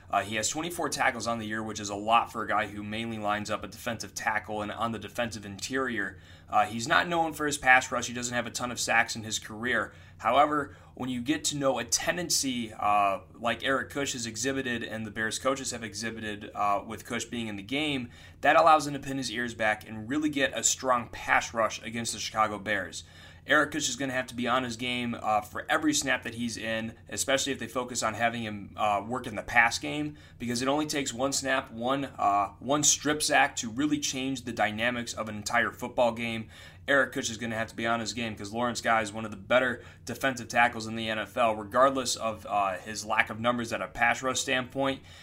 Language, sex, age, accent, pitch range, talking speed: English, male, 20-39, American, 105-130 Hz, 235 wpm